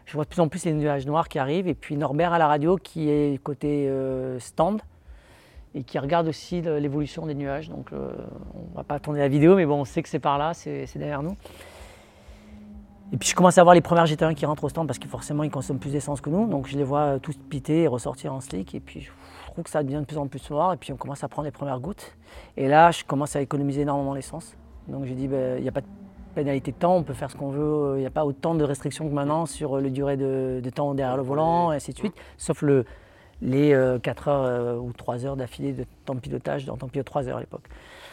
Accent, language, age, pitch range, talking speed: French, French, 30-49, 135-155 Hz, 270 wpm